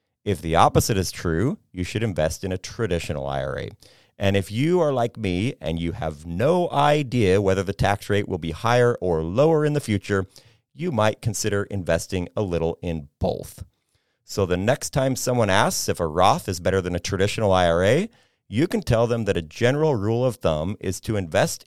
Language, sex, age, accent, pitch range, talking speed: English, male, 30-49, American, 85-120 Hz, 195 wpm